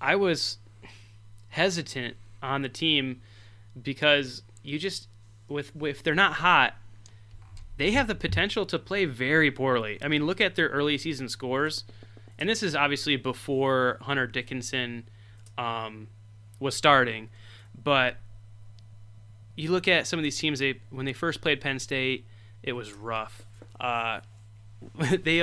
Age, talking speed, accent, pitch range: 20-39, 145 wpm, American, 105-140 Hz